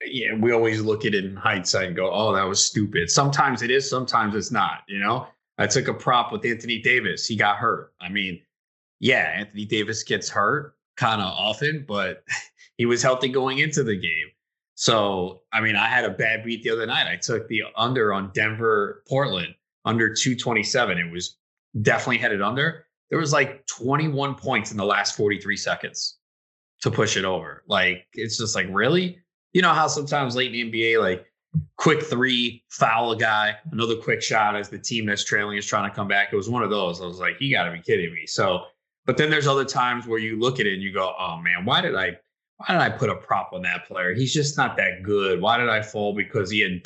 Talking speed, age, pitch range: 225 wpm, 30-49, 100-130 Hz